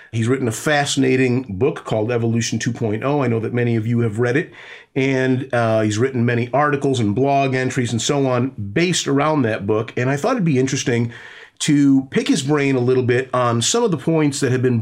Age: 40-59